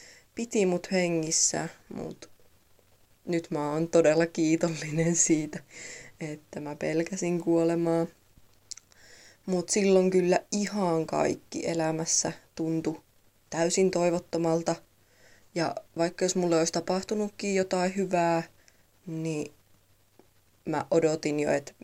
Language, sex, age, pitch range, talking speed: Finnish, female, 20-39, 145-170 Hz, 100 wpm